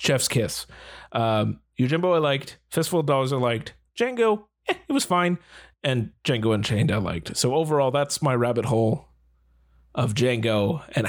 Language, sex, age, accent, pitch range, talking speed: English, male, 30-49, American, 120-175 Hz, 160 wpm